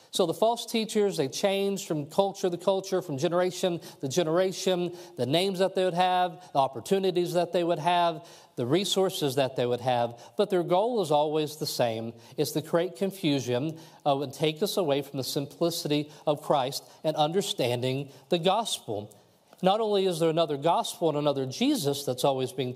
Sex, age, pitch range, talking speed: male, 40-59, 140-180 Hz, 180 wpm